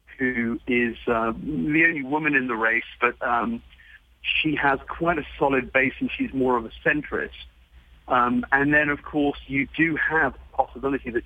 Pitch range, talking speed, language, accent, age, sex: 105-140 Hz, 180 wpm, English, British, 40-59, male